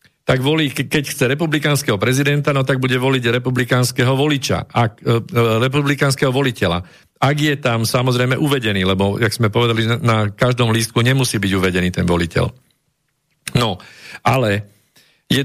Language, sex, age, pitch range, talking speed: Slovak, male, 50-69, 100-125 Hz, 130 wpm